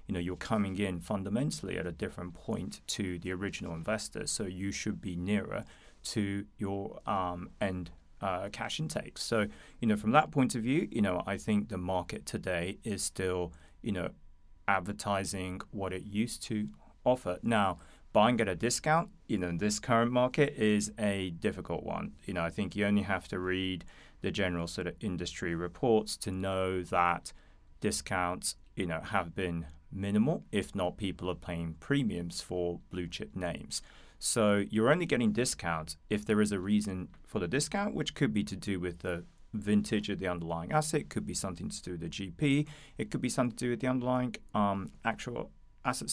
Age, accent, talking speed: 30-49, British, 185 wpm